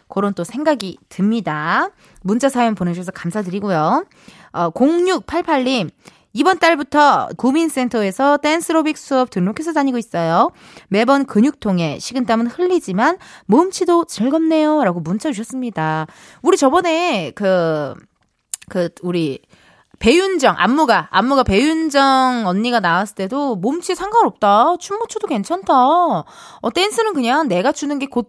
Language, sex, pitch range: Korean, female, 200-320 Hz